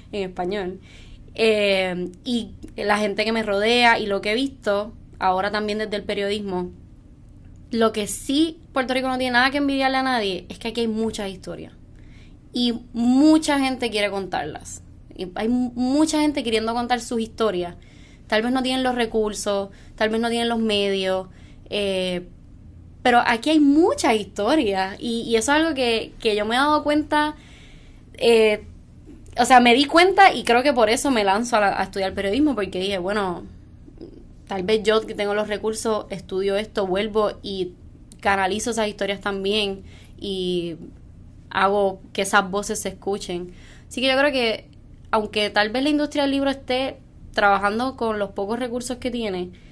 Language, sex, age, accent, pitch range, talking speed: Spanish, female, 20-39, American, 200-250 Hz, 170 wpm